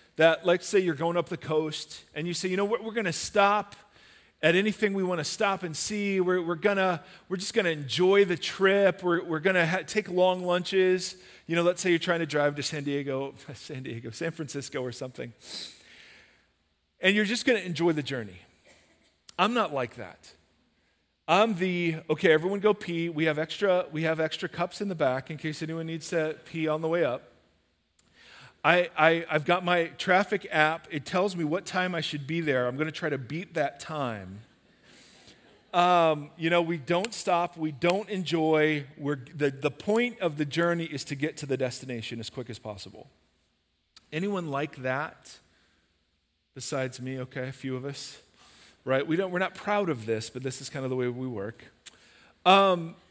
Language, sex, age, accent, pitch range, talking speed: English, male, 40-59, American, 135-180 Hz, 200 wpm